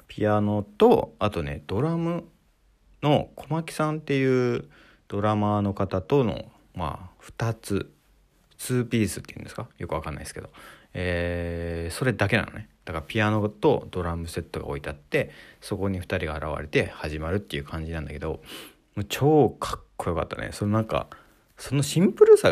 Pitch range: 85-140 Hz